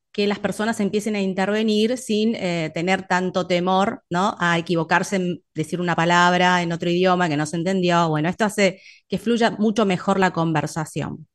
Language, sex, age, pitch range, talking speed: Spanish, female, 30-49, 175-230 Hz, 175 wpm